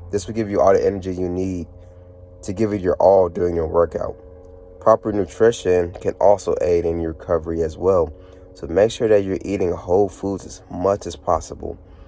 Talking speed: 195 wpm